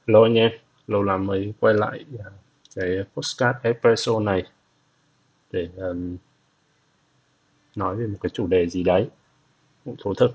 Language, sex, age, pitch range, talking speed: Vietnamese, male, 20-39, 95-140 Hz, 135 wpm